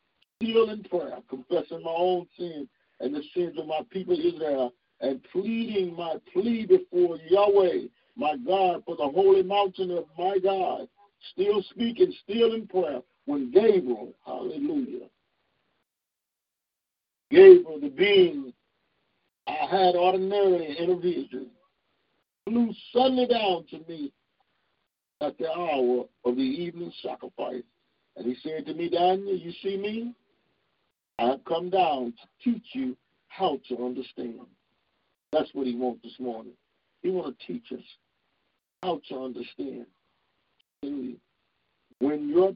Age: 50-69